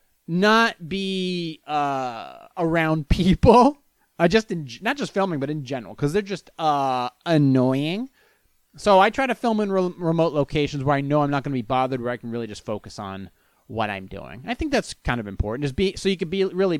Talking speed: 220 wpm